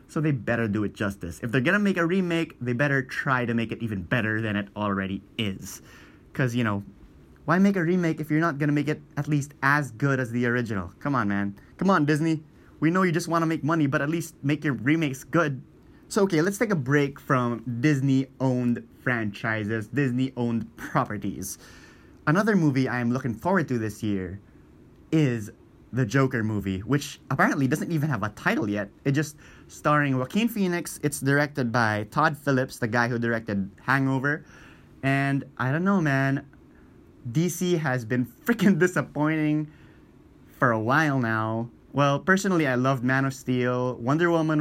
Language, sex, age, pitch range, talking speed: English, male, 20-39, 115-160 Hz, 185 wpm